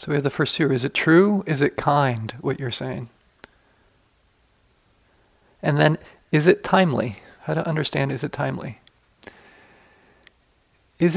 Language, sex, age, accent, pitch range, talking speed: English, male, 30-49, American, 130-160 Hz, 145 wpm